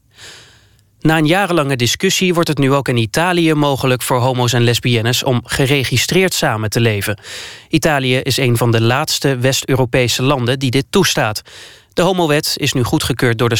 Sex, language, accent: male, Dutch, Dutch